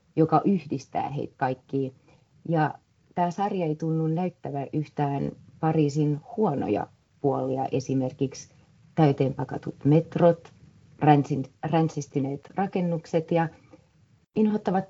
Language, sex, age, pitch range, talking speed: Finnish, female, 30-49, 140-170 Hz, 90 wpm